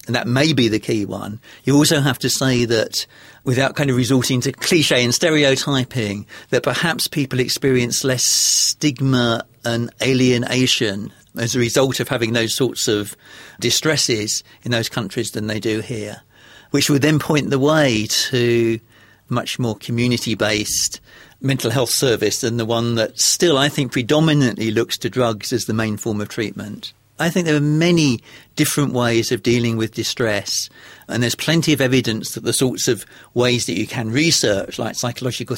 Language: English